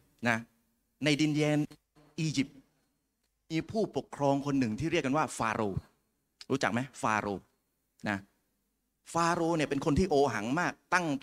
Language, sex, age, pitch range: Thai, male, 30-49, 135-165 Hz